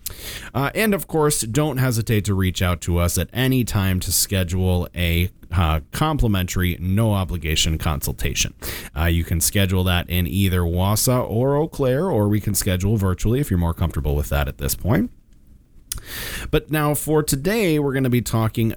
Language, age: English, 30-49